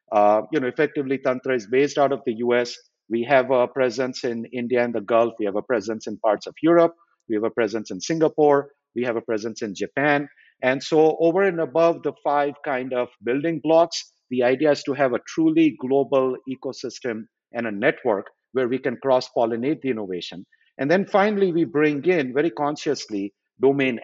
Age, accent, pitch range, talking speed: 50-69, Indian, 120-155 Hz, 195 wpm